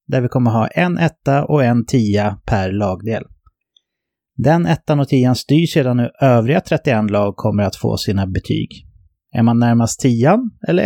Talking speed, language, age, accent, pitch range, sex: 175 wpm, English, 30-49, Swedish, 110-150 Hz, male